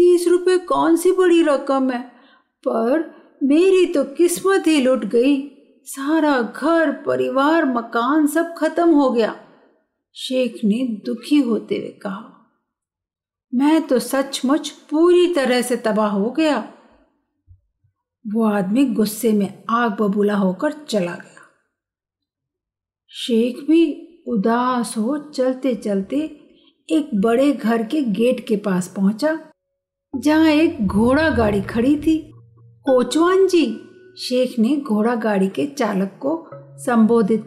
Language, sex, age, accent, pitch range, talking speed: Hindi, female, 50-69, native, 215-305 Hz, 120 wpm